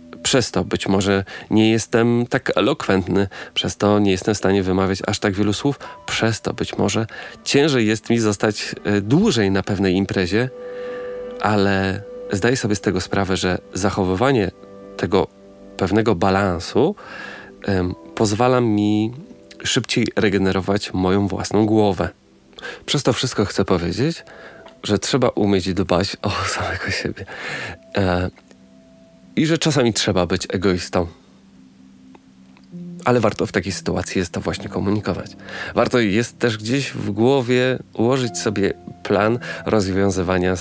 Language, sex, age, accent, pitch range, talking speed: Polish, male, 40-59, native, 95-110 Hz, 125 wpm